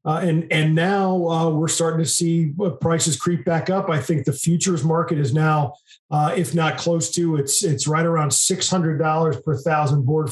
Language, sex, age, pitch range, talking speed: English, male, 40-59, 145-170 Hz, 205 wpm